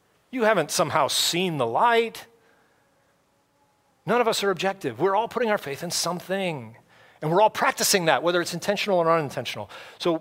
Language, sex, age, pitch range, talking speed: English, male, 40-59, 140-185 Hz, 170 wpm